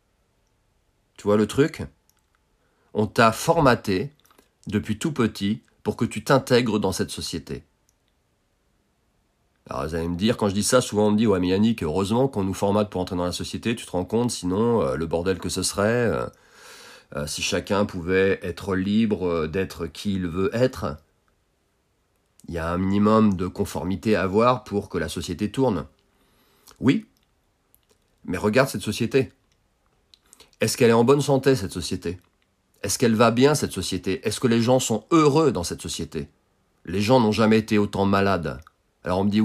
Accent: French